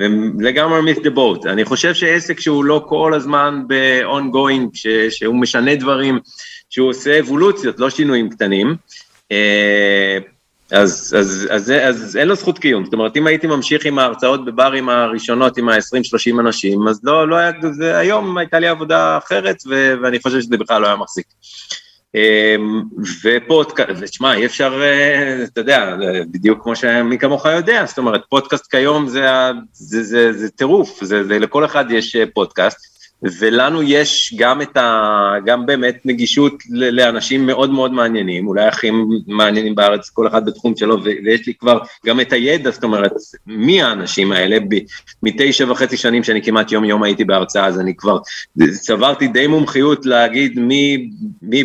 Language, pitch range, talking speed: Hebrew, 110-140 Hz, 150 wpm